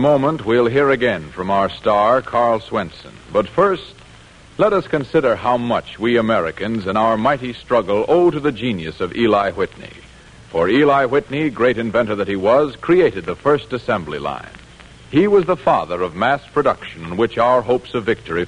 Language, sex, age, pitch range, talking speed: English, male, 60-79, 110-155 Hz, 180 wpm